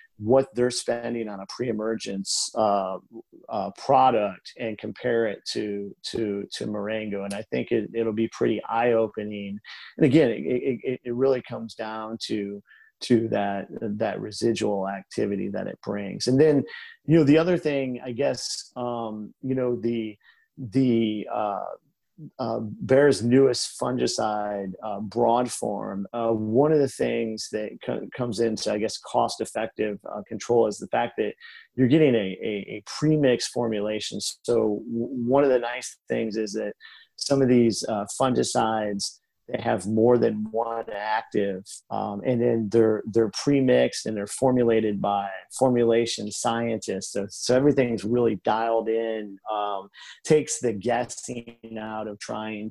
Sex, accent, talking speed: male, American, 150 wpm